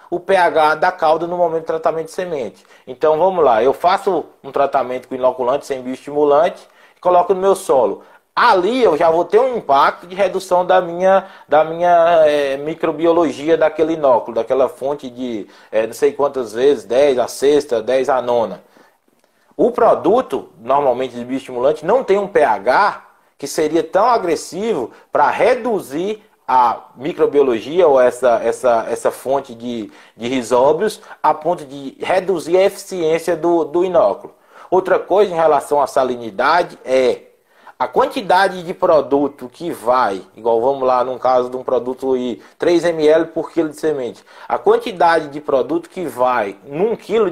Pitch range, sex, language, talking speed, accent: 135-190 Hz, male, Portuguese, 160 wpm, Brazilian